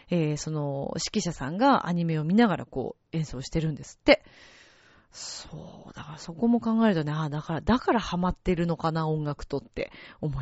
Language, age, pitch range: Japanese, 30-49, 160-260 Hz